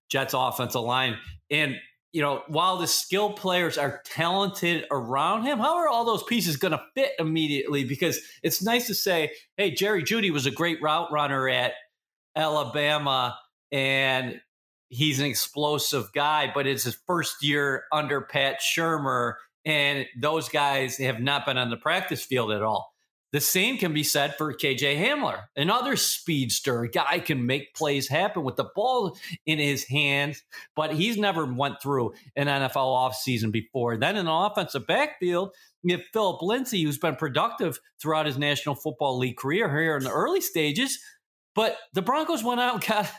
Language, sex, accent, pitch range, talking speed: English, male, American, 140-180 Hz, 175 wpm